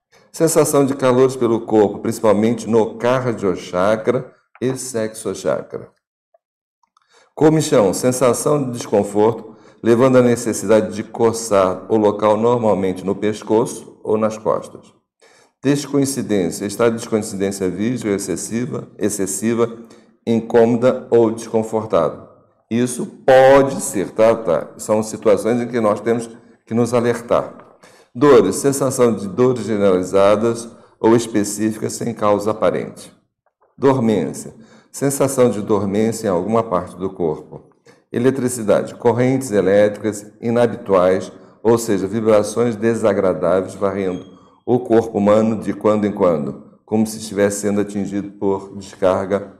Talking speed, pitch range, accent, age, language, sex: 115 wpm, 105-120 Hz, Brazilian, 60-79, Portuguese, male